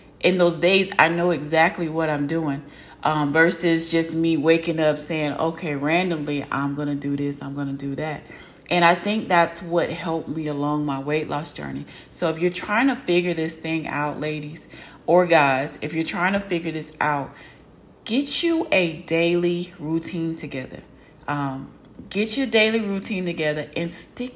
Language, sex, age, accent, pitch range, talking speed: English, female, 30-49, American, 155-180 Hz, 180 wpm